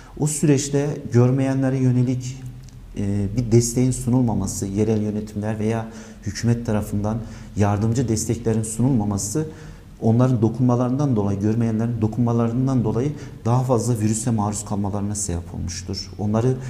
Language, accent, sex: Turkish, native, male